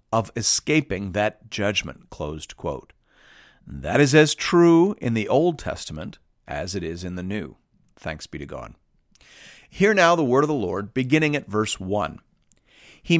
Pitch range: 105-150 Hz